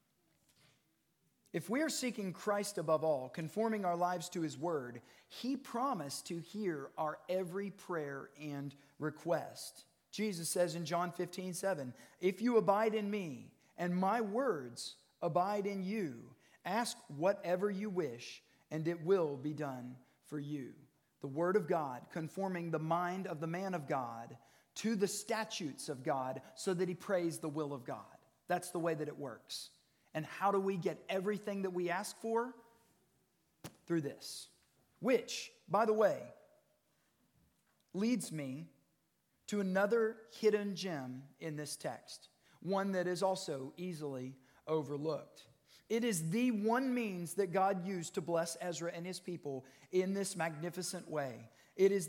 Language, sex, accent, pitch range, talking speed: English, male, American, 155-200 Hz, 150 wpm